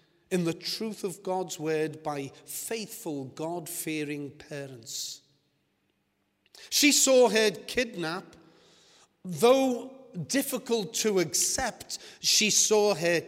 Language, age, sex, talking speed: English, 40-59, male, 95 wpm